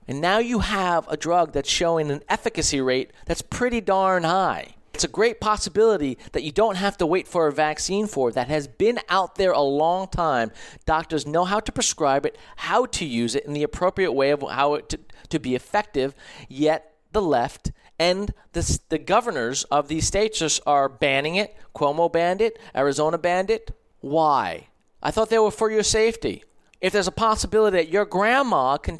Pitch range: 150-205 Hz